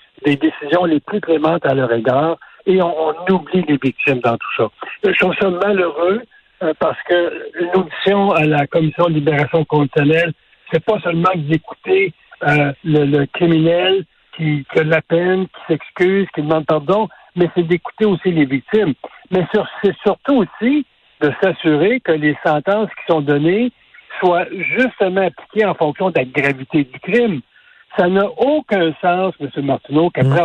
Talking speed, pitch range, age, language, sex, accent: 170 wpm, 150-190 Hz, 60-79, French, male, French